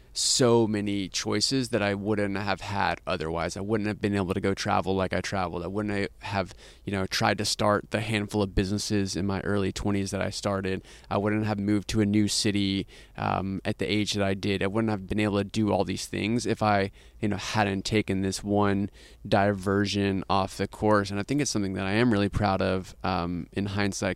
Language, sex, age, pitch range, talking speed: English, male, 20-39, 95-105 Hz, 225 wpm